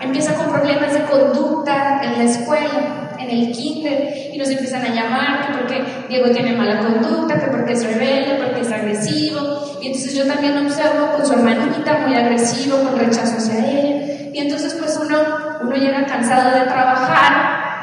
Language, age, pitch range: Spanish, 20-39, 245-280 Hz